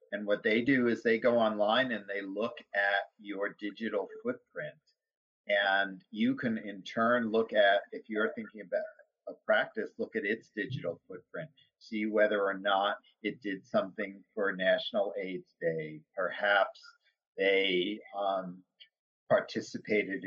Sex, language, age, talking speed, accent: male, English, 50-69, 140 wpm, American